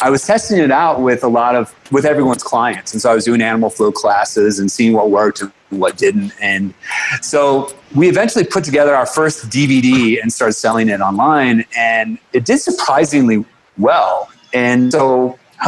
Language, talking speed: English, 190 wpm